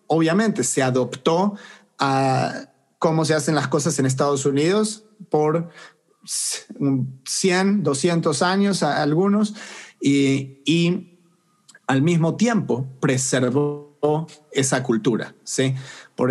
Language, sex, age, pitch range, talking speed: English, male, 40-59, 140-185 Hz, 95 wpm